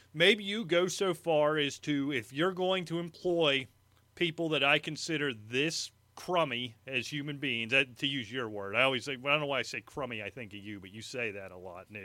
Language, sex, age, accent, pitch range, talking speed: English, male, 30-49, American, 125-180 Hz, 240 wpm